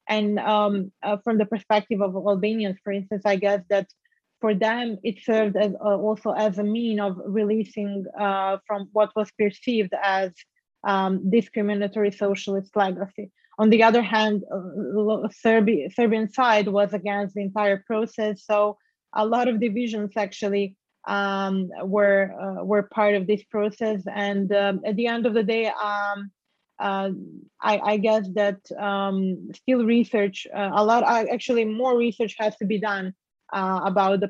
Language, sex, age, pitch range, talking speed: Hungarian, female, 20-39, 195-215 Hz, 165 wpm